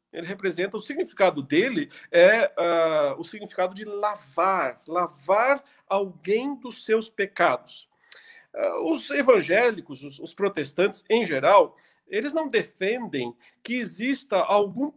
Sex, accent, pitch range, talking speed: male, Brazilian, 170-260 Hz, 110 wpm